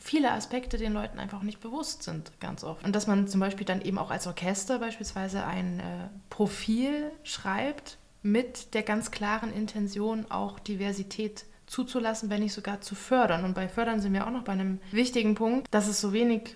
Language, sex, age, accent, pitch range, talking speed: German, female, 20-39, German, 180-210 Hz, 190 wpm